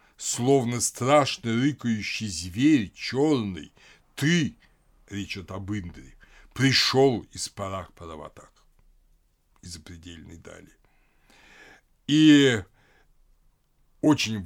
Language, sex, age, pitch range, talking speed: Russian, male, 60-79, 100-135 Hz, 70 wpm